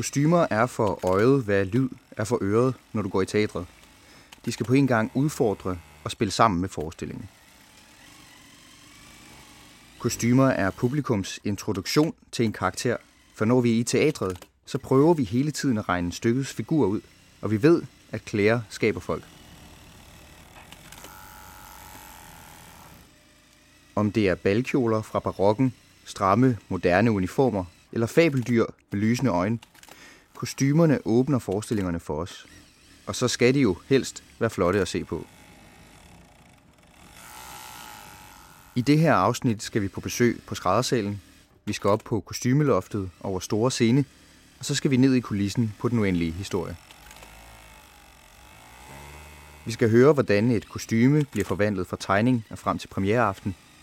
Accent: native